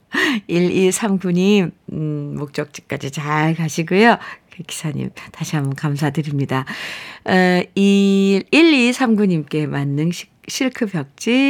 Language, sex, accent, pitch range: Korean, female, native, 155-235 Hz